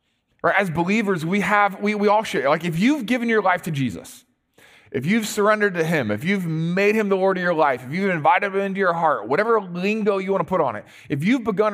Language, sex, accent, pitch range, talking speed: English, male, American, 165-215 Hz, 250 wpm